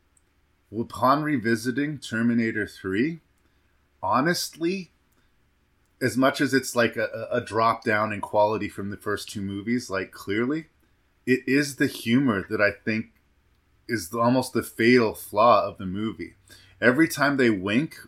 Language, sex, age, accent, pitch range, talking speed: English, male, 30-49, American, 95-120 Hz, 140 wpm